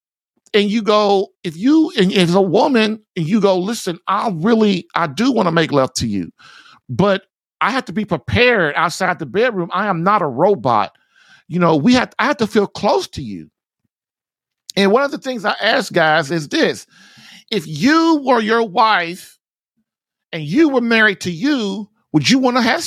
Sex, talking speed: male, 195 wpm